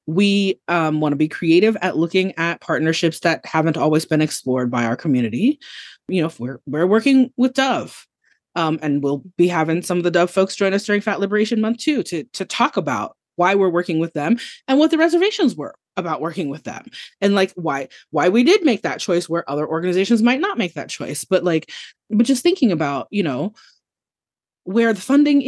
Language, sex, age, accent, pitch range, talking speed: English, female, 20-39, American, 155-220 Hz, 205 wpm